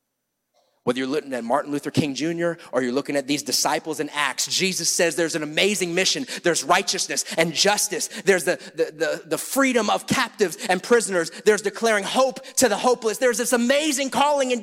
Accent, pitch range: American, 145-230 Hz